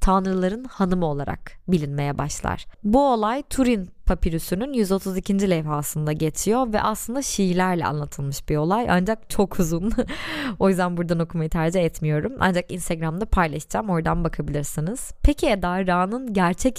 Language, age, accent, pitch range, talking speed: Turkish, 20-39, native, 165-210 Hz, 130 wpm